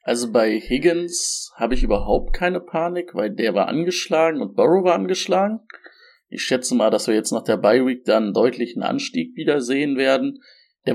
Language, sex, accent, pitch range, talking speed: German, male, German, 125-175 Hz, 185 wpm